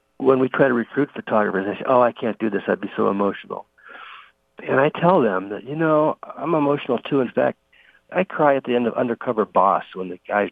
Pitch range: 100-125 Hz